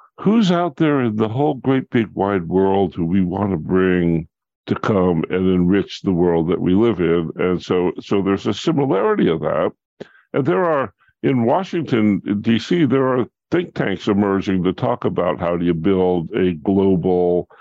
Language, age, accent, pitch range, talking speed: English, 60-79, American, 90-115 Hz, 180 wpm